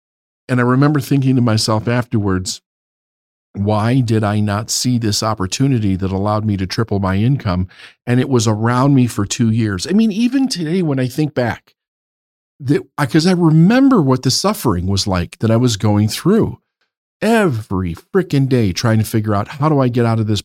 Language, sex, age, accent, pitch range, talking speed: English, male, 50-69, American, 105-145 Hz, 190 wpm